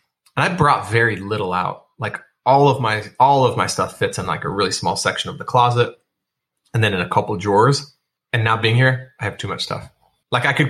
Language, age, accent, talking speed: English, 20-39, American, 240 wpm